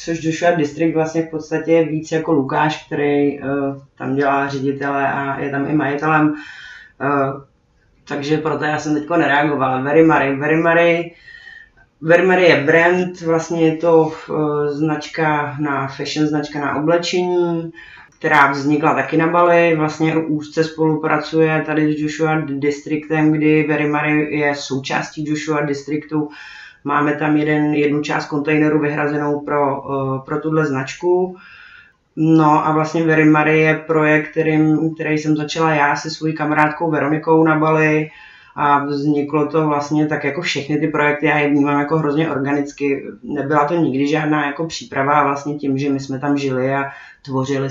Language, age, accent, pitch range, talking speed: Czech, 30-49, native, 140-155 Hz, 155 wpm